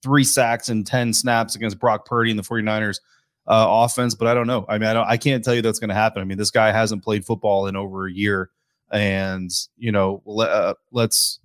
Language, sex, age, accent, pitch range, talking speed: English, male, 20-39, American, 105-120 Hz, 240 wpm